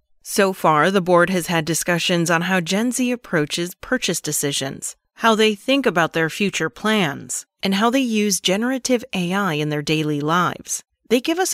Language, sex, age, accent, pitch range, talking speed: English, female, 30-49, American, 160-210 Hz, 175 wpm